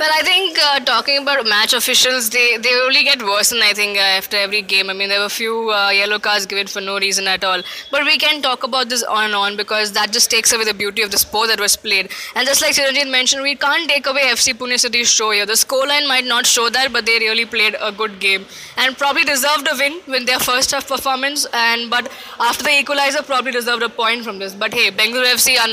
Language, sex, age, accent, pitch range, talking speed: English, female, 20-39, Indian, 215-270 Hz, 260 wpm